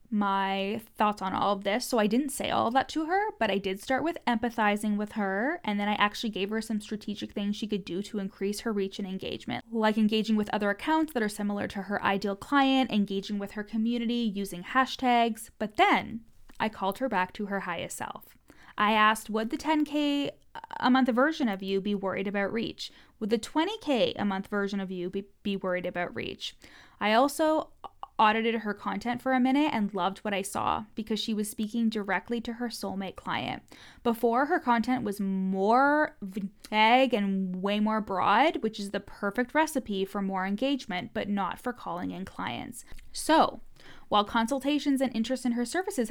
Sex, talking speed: female, 195 wpm